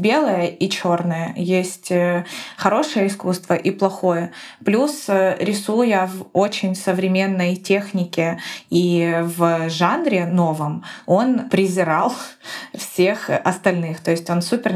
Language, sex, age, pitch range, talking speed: Ukrainian, female, 20-39, 175-200 Hz, 105 wpm